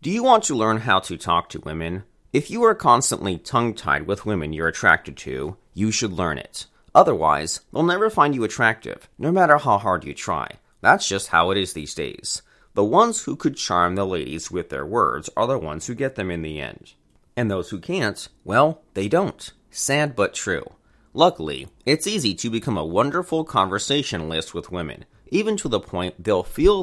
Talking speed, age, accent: 195 wpm, 30-49, American